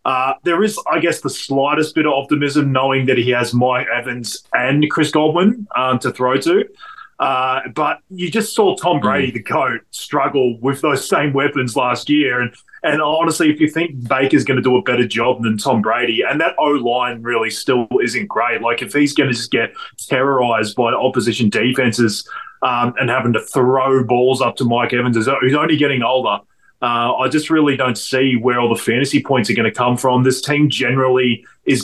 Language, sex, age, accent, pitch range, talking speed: English, male, 20-39, Australian, 120-145 Hz, 200 wpm